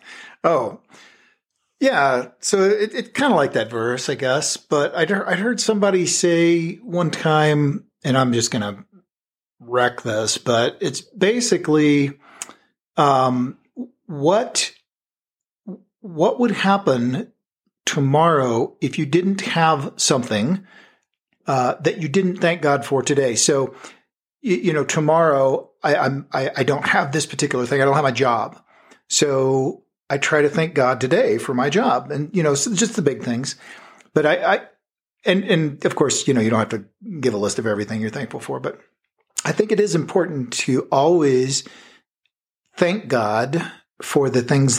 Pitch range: 130-175 Hz